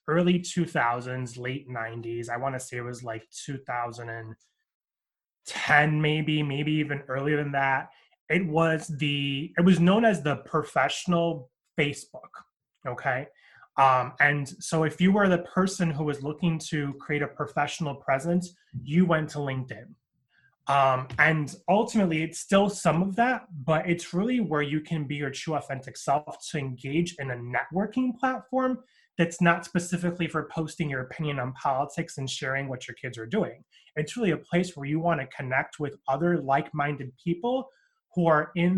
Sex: male